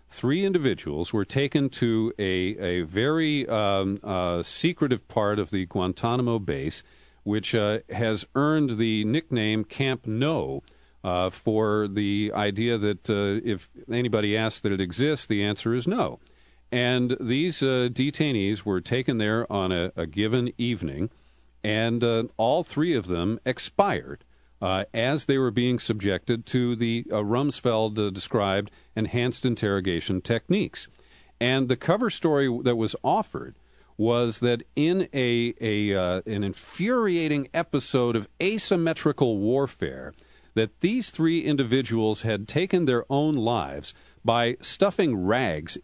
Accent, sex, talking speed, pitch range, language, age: American, male, 135 wpm, 105-135 Hz, English, 50-69